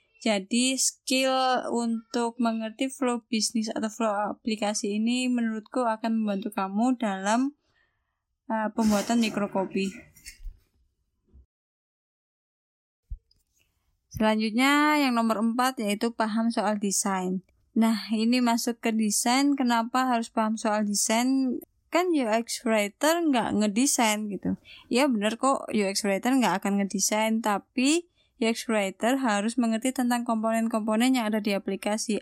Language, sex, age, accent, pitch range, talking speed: Indonesian, female, 20-39, native, 205-245 Hz, 115 wpm